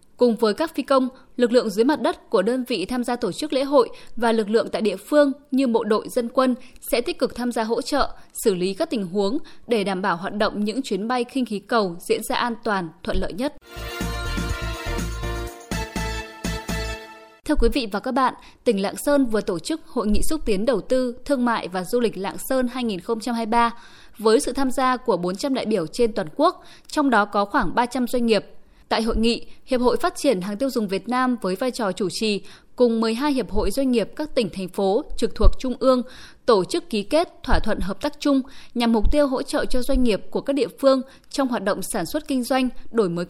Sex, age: female, 10-29